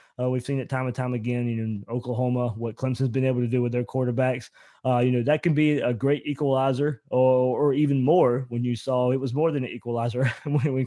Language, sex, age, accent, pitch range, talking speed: English, male, 20-39, American, 125-140 Hz, 260 wpm